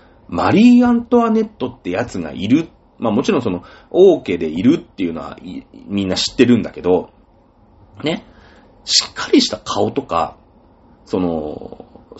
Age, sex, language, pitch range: 30-49, male, Japanese, 90-140 Hz